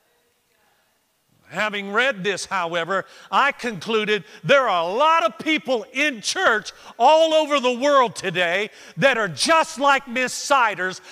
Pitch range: 185-270 Hz